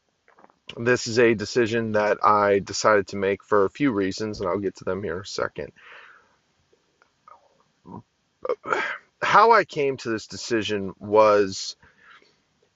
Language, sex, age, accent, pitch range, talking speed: English, male, 30-49, American, 105-140 Hz, 135 wpm